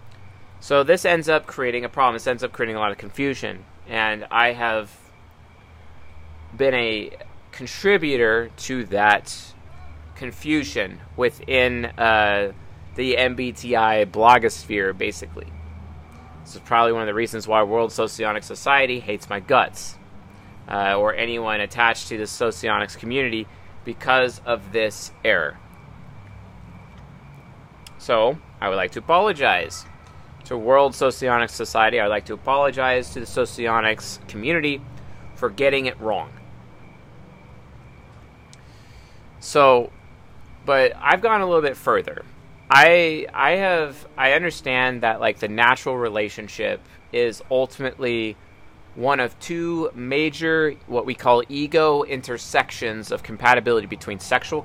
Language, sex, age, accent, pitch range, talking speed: English, male, 30-49, American, 100-130 Hz, 120 wpm